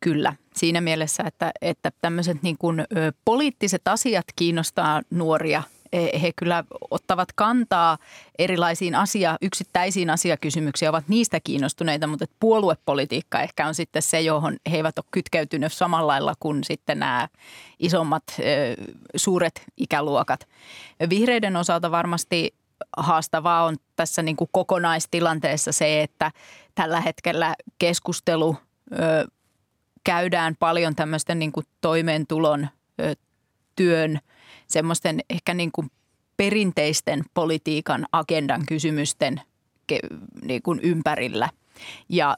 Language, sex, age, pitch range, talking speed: Finnish, female, 30-49, 155-180 Hz, 110 wpm